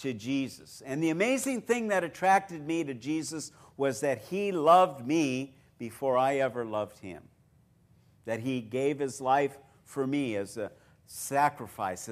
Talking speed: 155 wpm